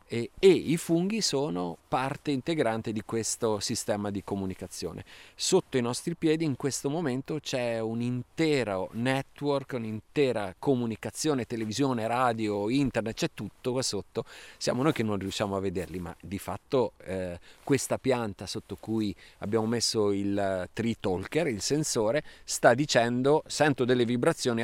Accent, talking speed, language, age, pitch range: native, 145 wpm, Italian, 30-49, 100-130 Hz